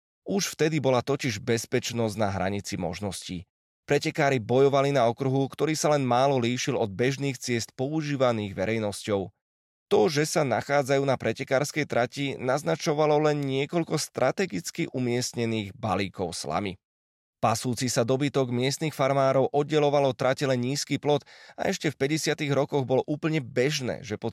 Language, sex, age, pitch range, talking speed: Slovak, male, 20-39, 115-145 Hz, 135 wpm